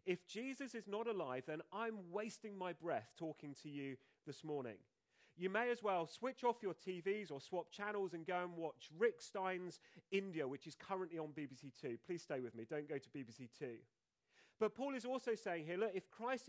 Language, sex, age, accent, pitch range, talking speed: English, male, 30-49, British, 155-215 Hz, 210 wpm